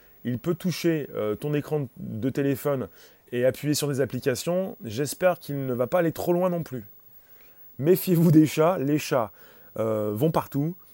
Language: French